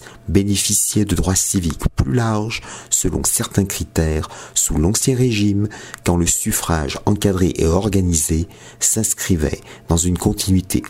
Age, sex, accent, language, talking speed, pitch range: 50-69, male, French, French, 120 wpm, 85-105 Hz